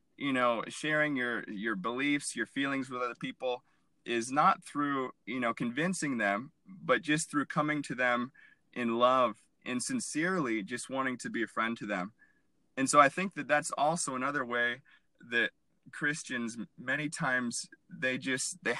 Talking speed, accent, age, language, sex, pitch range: 165 wpm, American, 20-39, English, male, 125-155 Hz